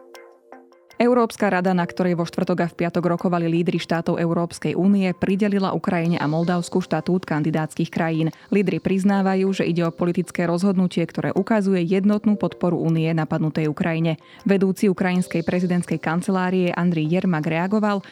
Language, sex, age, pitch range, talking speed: Slovak, female, 20-39, 170-195 Hz, 140 wpm